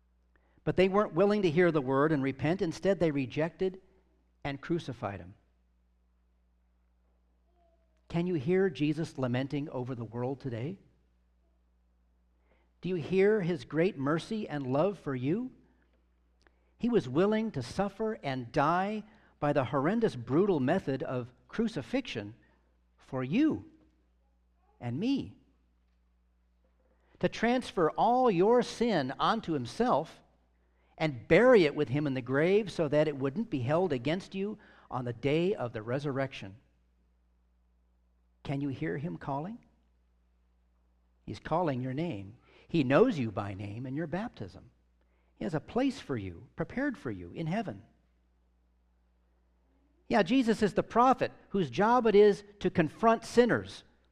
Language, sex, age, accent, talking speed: English, male, 50-69, American, 135 wpm